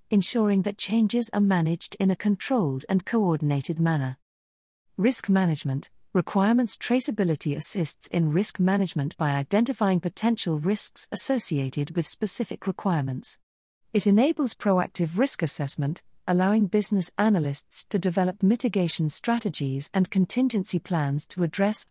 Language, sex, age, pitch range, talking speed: English, female, 50-69, 155-215 Hz, 120 wpm